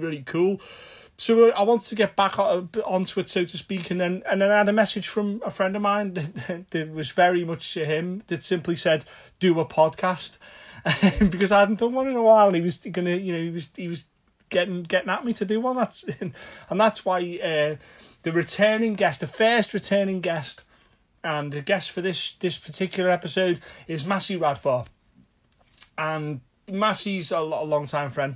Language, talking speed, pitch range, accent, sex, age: English, 205 wpm, 150-190 Hz, British, male, 30-49